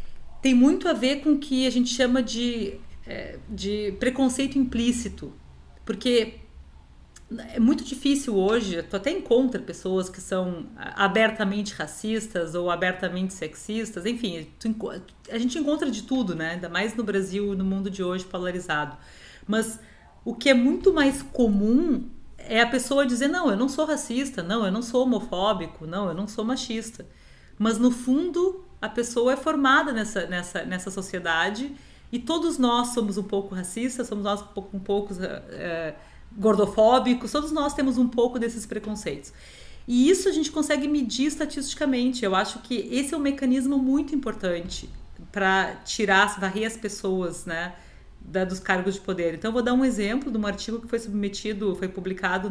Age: 40-59